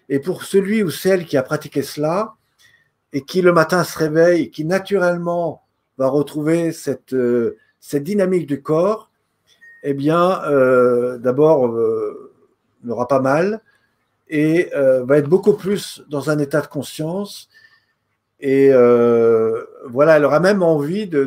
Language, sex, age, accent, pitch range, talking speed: French, male, 50-69, French, 135-180 Hz, 145 wpm